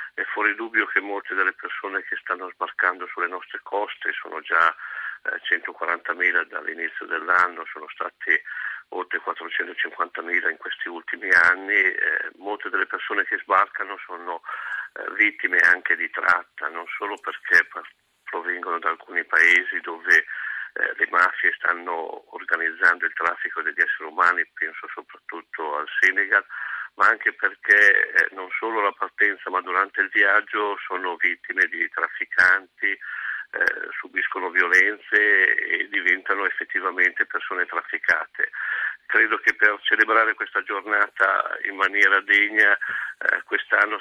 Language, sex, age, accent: Italian, male, 50-69, native